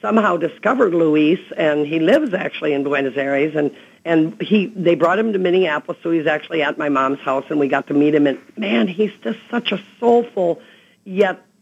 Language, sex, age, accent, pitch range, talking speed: English, female, 50-69, American, 150-200 Hz, 200 wpm